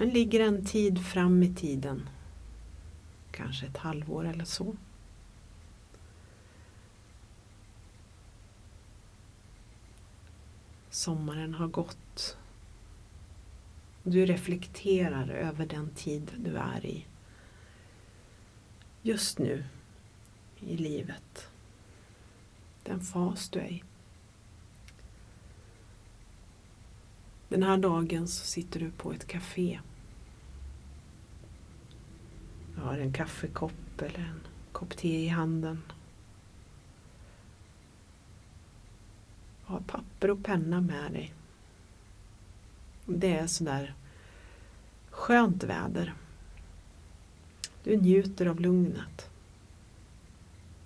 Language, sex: English, female